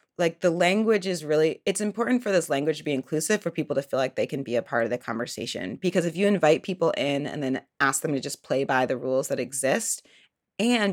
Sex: female